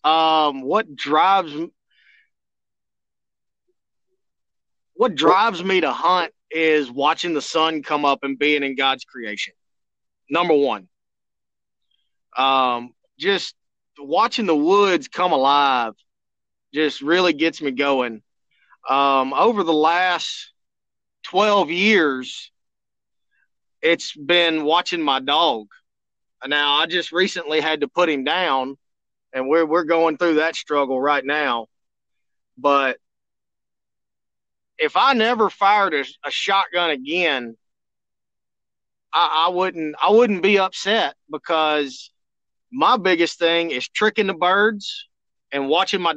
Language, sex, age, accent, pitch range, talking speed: English, male, 30-49, American, 145-190 Hz, 115 wpm